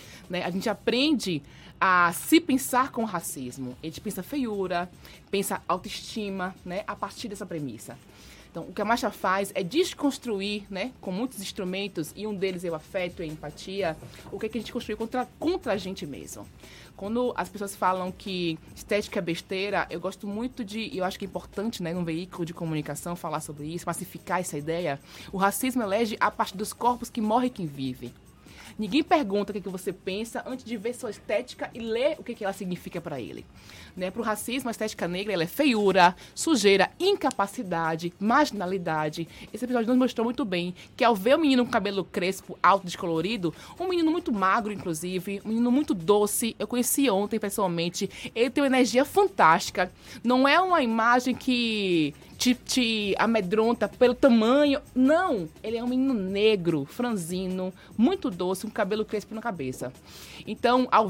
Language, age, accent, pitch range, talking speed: Portuguese, 20-39, Brazilian, 175-235 Hz, 175 wpm